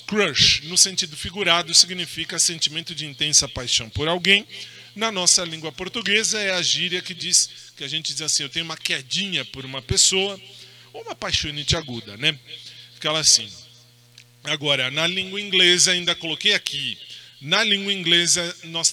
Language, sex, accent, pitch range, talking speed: Portuguese, male, Brazilian, 135-175 Hz, 160 wpm